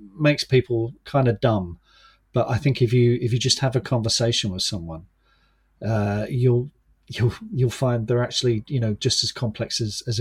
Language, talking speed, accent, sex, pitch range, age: English, 190 wpm, British, male, 110-140 Hz, 40-59